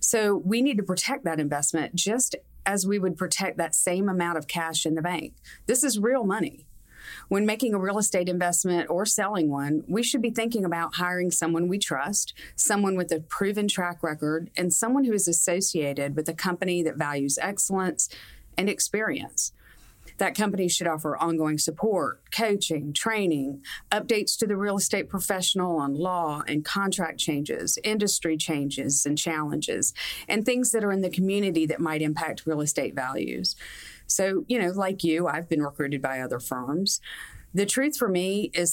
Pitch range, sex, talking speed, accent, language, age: 160-195 Hz, female, 175 wpm, American, English, 40-59